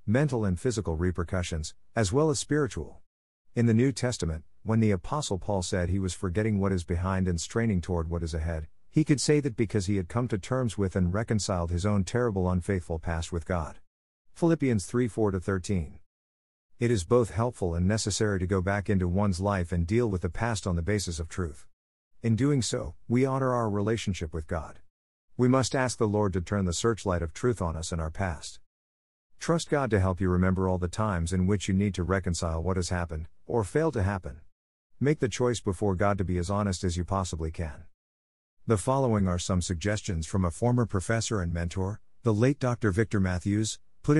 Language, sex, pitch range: English, male, 85-115 Hz